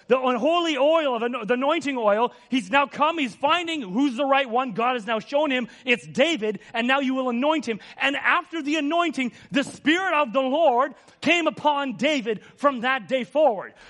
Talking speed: 195 wpm